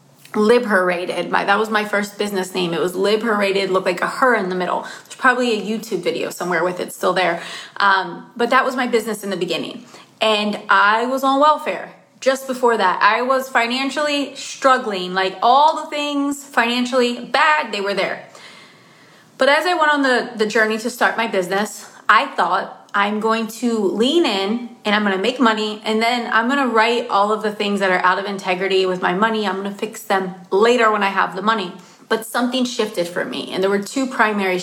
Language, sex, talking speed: English, female, 205 wpm